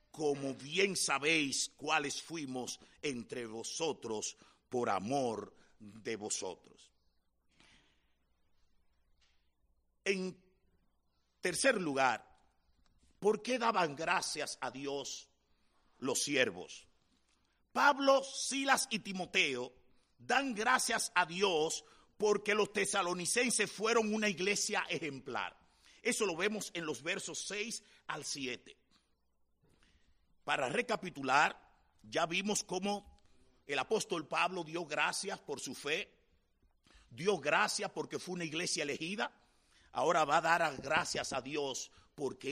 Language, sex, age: English, male, 50-69